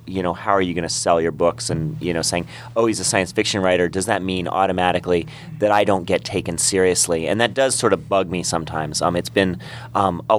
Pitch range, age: 95-120 Hz, 30-49